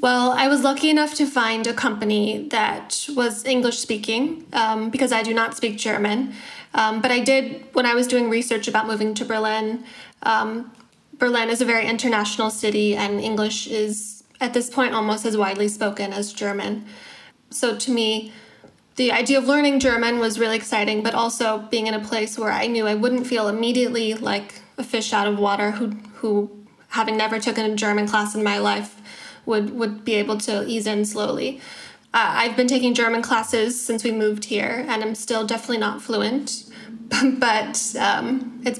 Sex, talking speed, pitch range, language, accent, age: female, 180 wpm, 220-255 Hz, English, American, 10-29